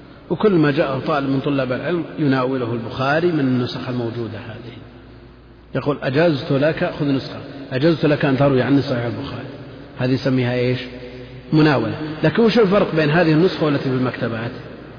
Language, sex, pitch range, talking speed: Arabic, male, 125-155 Hz, 150 wpm